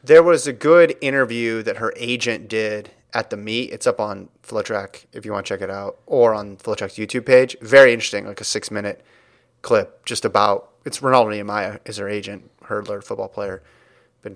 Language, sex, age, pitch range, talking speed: English, male, 30-49, 105-135 Hz, 195 wpm